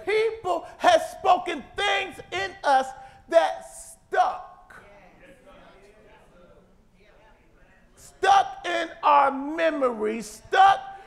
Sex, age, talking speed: male, 40-59, 70 wpm